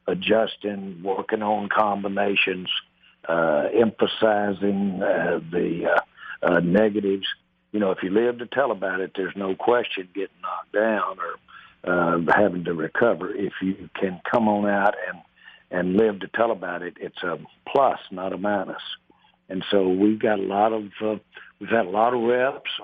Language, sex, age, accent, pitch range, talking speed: English, male, 60-79, American, 95-110 Hz, 170 wpm